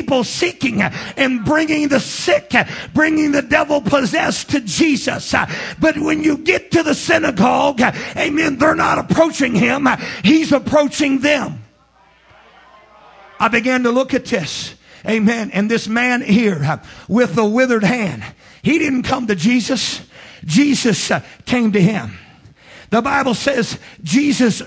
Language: English